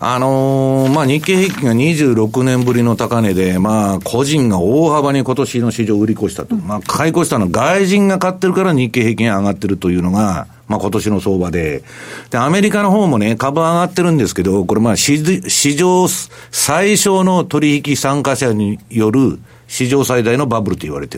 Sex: male